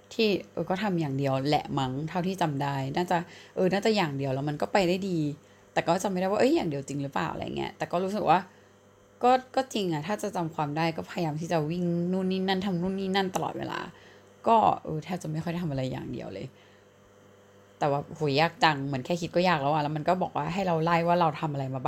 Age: 20-39